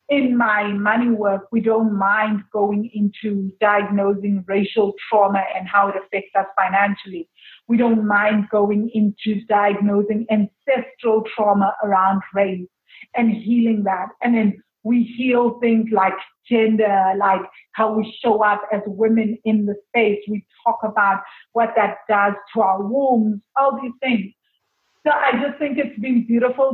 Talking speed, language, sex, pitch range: 150 wpm, English, female, 200-230 Hz